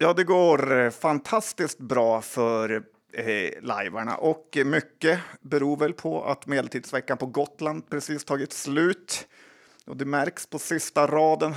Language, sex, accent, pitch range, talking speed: Swedish, male, native, 125-150 Hz, 135 wpm